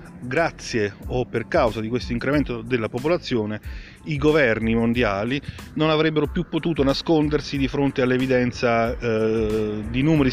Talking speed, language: 130 wpm, Italian